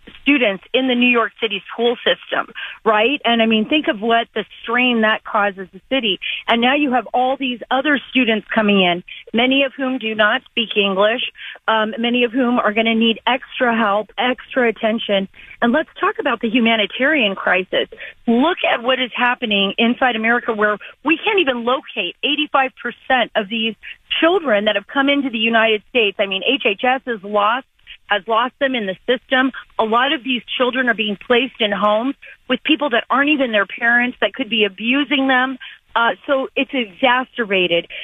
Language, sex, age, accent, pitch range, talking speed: English, female, 40-59, American, 210-255 Hz, 185 wpm